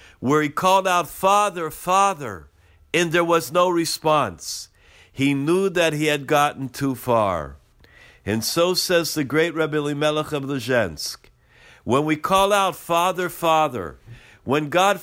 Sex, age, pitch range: male, 50-69, 145-185 Hz